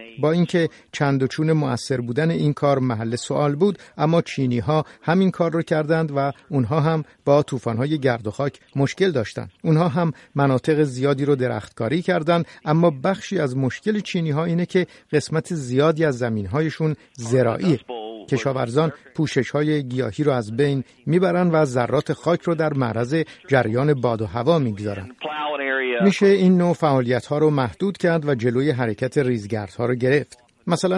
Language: Persian